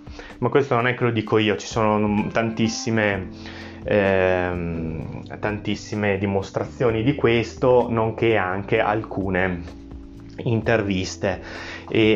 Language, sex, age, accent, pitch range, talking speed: Italian, male, 20-39, native, 95-115 Hz, 105 wpm